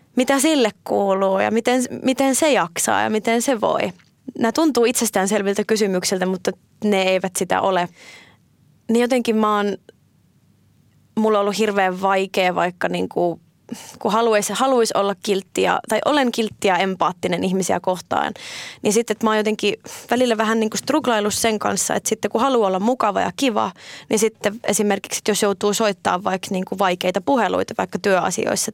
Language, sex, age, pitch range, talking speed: Finnish, female, 20-39, 190-230 Hz, 155 wpm